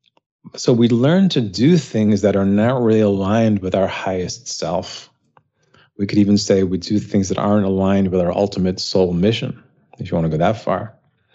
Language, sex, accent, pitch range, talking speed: English, male, American, 95-120 Hz, 195 wpm